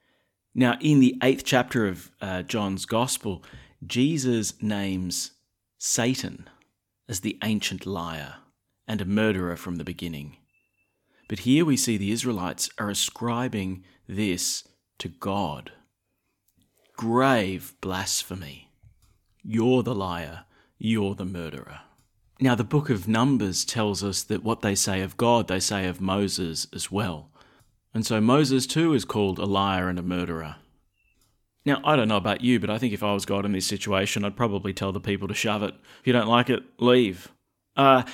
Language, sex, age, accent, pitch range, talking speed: English, male, 30-49, Australian, 95-125 Hz, 160 wpm